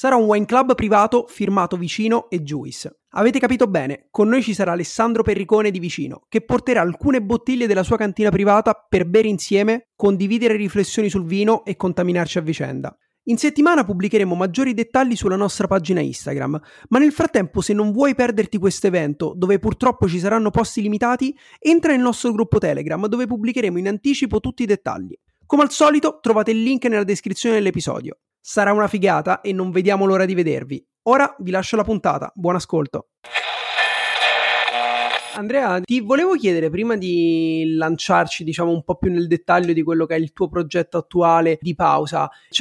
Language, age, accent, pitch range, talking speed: Italian, 30-49, native, 165-220 Hz, 175 wpm